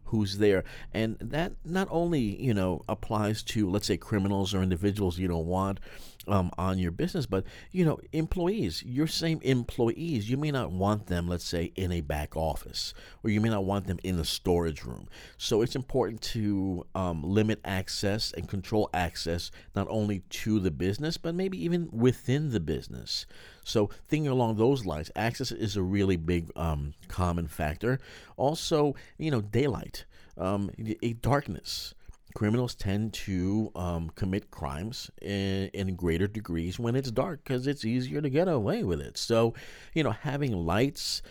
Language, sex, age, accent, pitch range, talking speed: English, male, 50-69, American, 90-120 Hz, 170 wpm